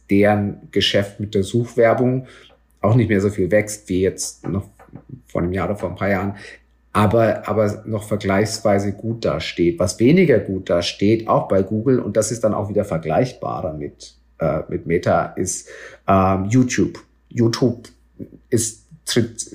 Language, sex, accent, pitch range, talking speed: German, male, German, 95-120 Hz, 160 wpm